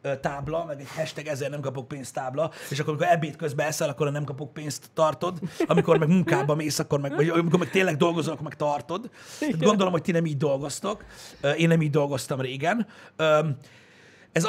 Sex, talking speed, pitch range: male, 195 wpm, 135-170 Hz